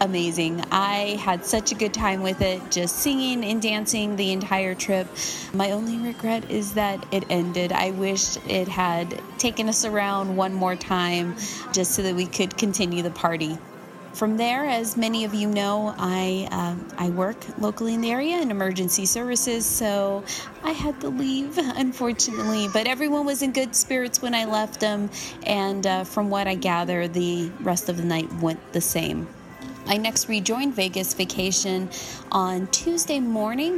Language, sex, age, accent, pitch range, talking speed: English, female, 20-39, American, 180-220 Hz, 170 wpm